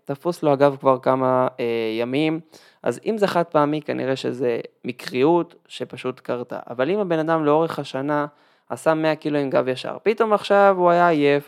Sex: male